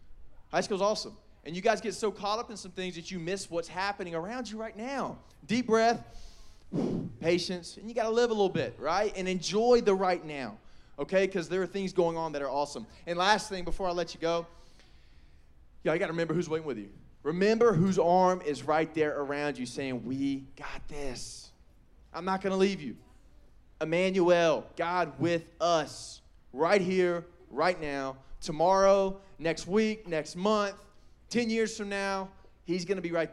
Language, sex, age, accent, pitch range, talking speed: English, male, 20-39, American, 150-195 Hz, 190 wpm